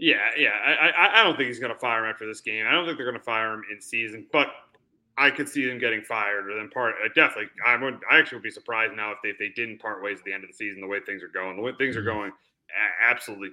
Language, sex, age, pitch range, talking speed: English, male, 30-49, 125-200 Hz, 295 wpm